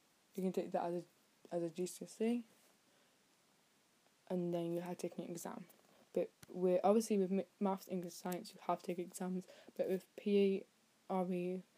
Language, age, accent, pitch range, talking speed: English, 20-39, British, 175-190 Hz, 170 wpm